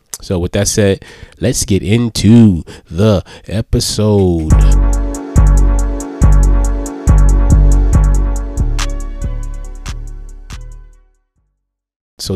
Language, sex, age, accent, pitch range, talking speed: English, male, 20-39, American, 85-110 Hz, 50 wpm